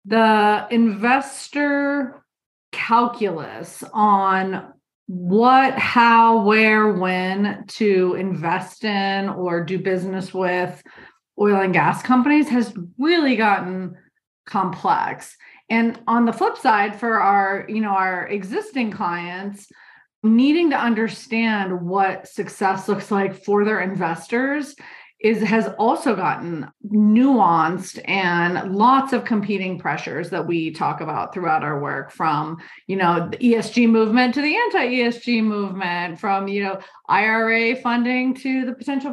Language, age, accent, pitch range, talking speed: English, 30-49, American, 190-240 Hz, 125 wpm